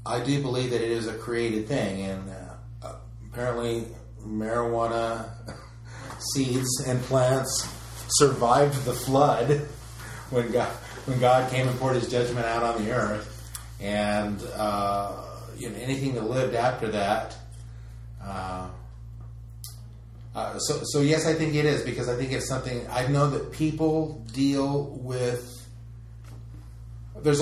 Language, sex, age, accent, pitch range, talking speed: English, male, 30-49, American, 110-125 Hz, 135 wpm